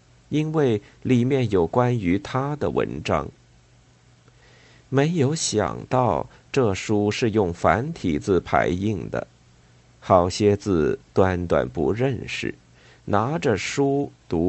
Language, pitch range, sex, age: Chinese, 85-130 Hz, male, 50-69